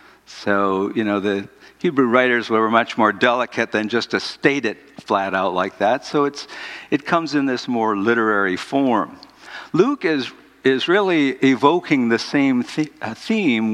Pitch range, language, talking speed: 105-130 Hz, English, 155 wpm